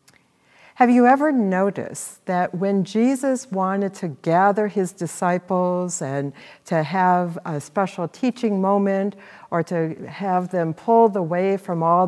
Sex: female